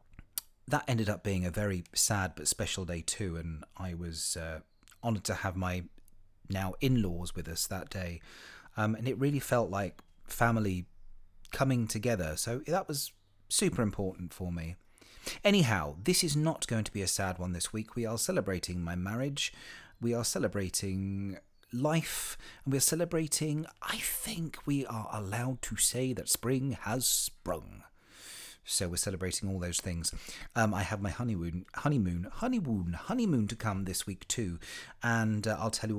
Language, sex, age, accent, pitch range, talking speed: English, male, 30-49, British, 95-125 Hz, 165 wpm